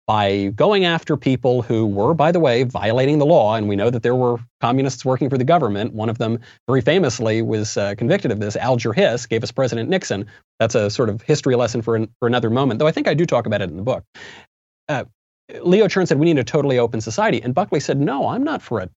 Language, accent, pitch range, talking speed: English, American, 110-150 Hz, 250 wpm